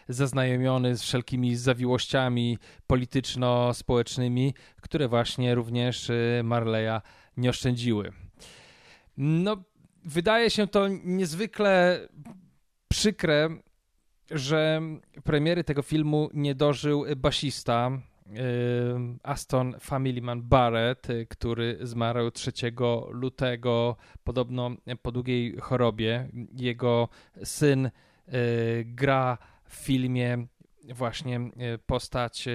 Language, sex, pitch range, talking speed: Polish, male, 120-140 Hz, 75 wpm